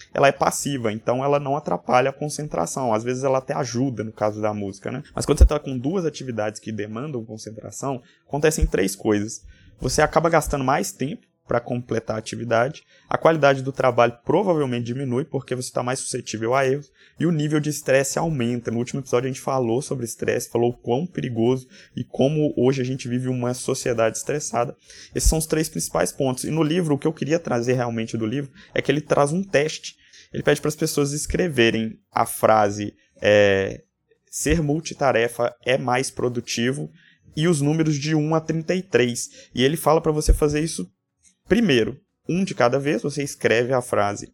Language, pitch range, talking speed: Portuguese, 120-150 Hz, 190 wpm